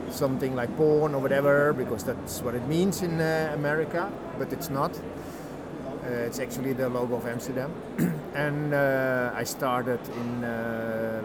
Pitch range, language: 125-150 Hz, Czech